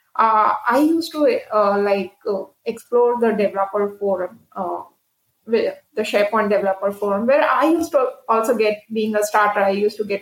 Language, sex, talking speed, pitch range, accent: English, female, 175 wpm, 200-230 Hz, Indian